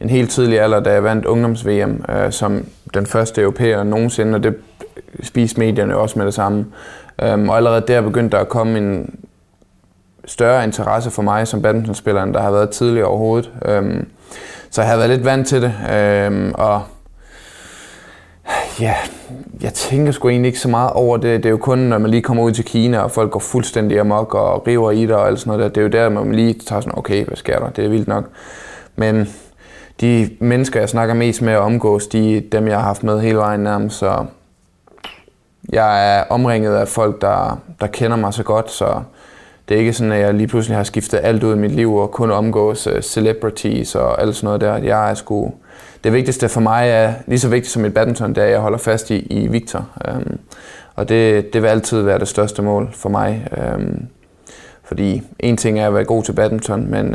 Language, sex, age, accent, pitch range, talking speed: Danish, male, 20-39, native, 105-115 Hz, 215 wpm